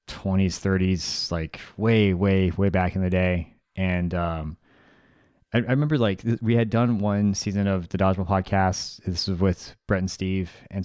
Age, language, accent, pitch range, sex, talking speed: 30-49, English, American, 90-105 Hz, male, 185 wpm